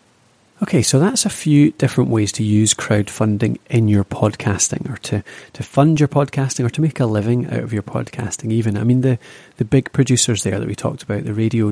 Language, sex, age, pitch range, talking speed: English, male, 30-49, 110-140 Hz, 215 wpm